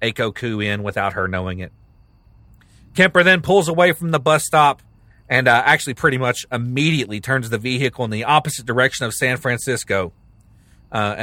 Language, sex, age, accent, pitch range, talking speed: English, male, 40-59, American, 110-160 Hz, 165 wpm